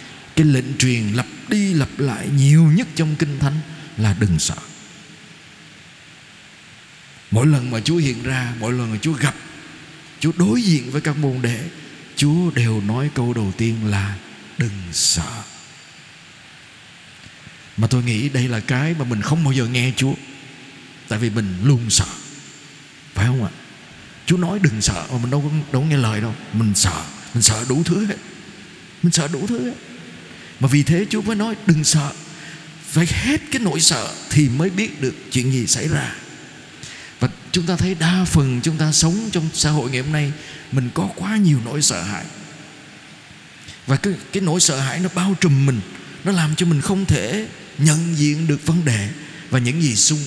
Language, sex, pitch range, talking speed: Vietnamese, male, 125-170 Hz, 185 wpm